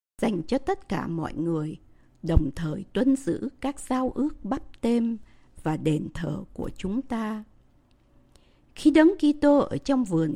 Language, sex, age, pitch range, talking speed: Vietnamese, female, 60-79, 190-265 Hz, 155 wpm